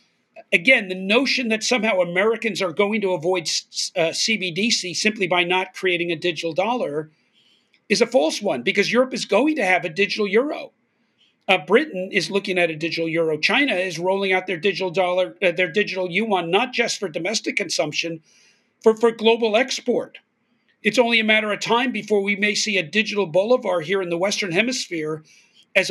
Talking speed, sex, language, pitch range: 185 wpm, male, English, 175-215 Hz